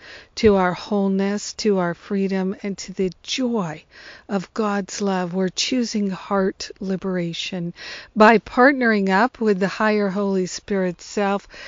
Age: 50-69